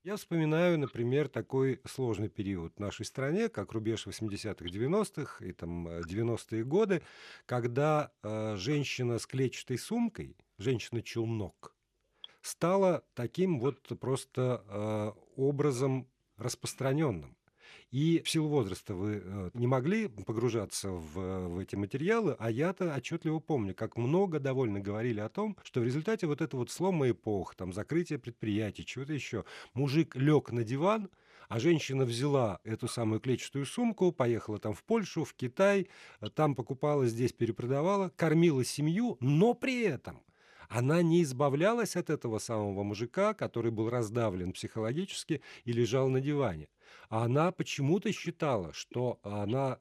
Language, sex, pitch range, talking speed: Russian, male, 110-150 Hz, 135 wpm